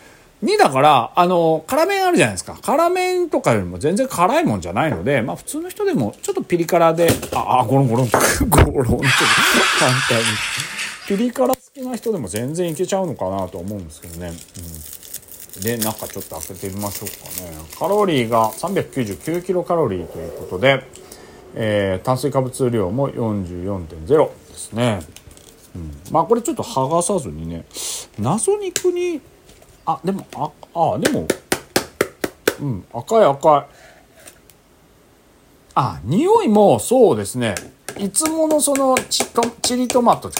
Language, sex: Japanese, male